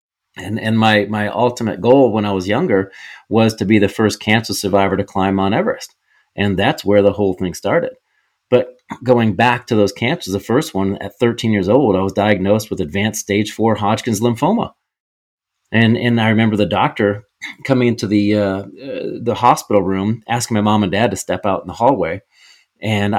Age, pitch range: 30-49, 100-120 Hz